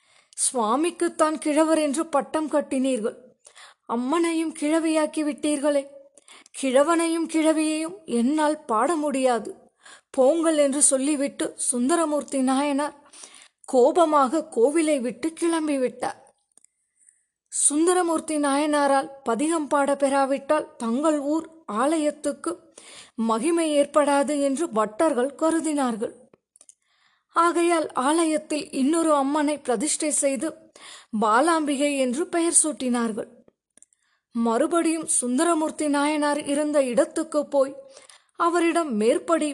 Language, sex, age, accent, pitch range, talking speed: Tamil, female, 20-39, native, 275-320 Hz, 75 wpm